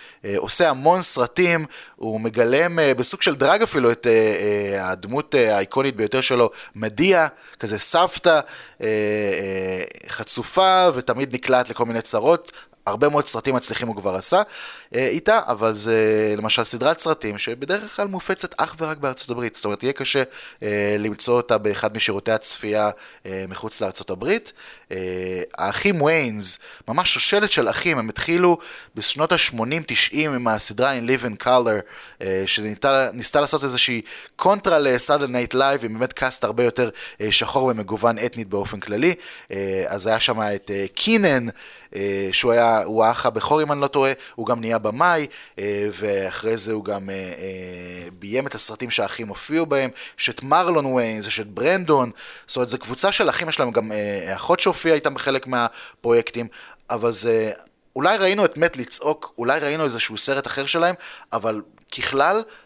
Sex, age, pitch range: male, 20-39, 105-140 Hz